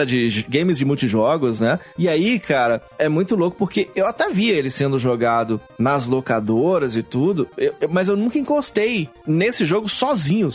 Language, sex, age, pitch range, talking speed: Portuguese, male, 20-39, 125-190 Hz, 175 wpm